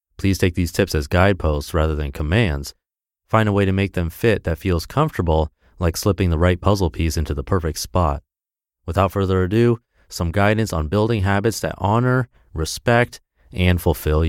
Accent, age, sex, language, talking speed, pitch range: American, 30-49, male, English, 175 wpm, 85-115 Hz